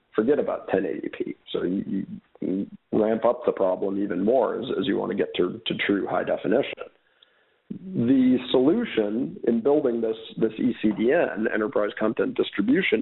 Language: English